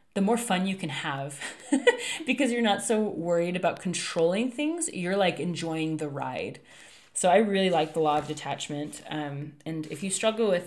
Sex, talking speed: female, 185 wpm